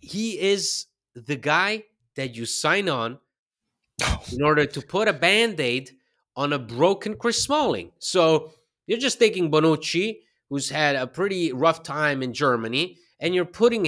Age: 30-49